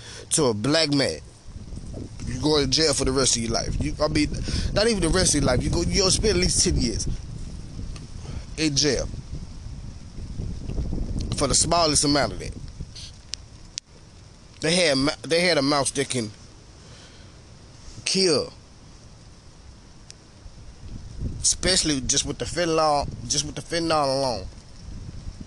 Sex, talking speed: male, 140 wpm